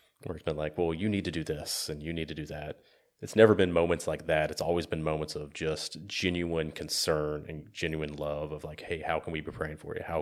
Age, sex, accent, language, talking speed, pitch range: 30-49, male, American, English, 260 wpm, 75-85 Hz